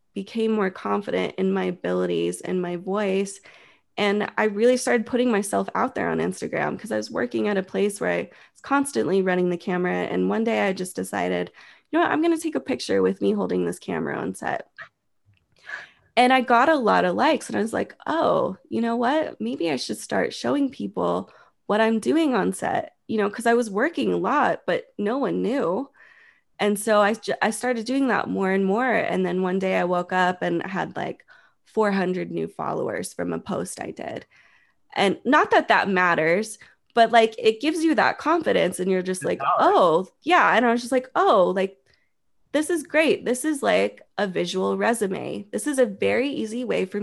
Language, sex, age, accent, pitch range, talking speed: English, female, 20-39, American, 180-245 Hz, 205 wpm